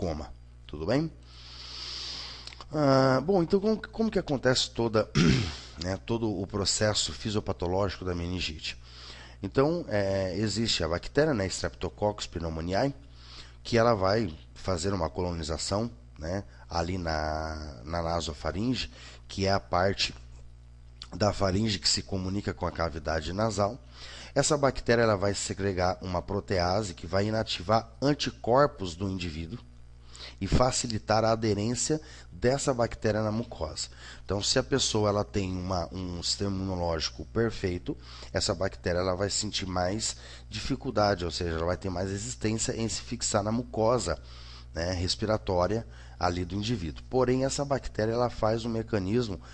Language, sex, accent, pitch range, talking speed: Portuguese, male, Brazilian, 80-110 Hz, 140 wpm